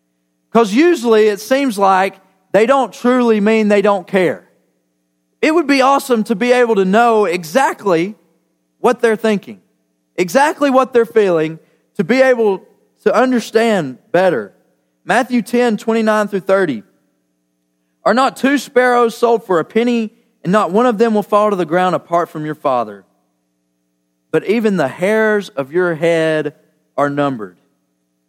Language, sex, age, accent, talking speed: English, male, 40-59, American, 155 wpm